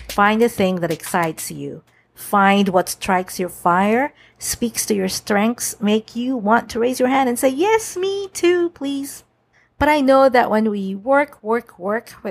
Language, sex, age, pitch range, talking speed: English, female, 50-69, 185-240 Hz, 180 wpm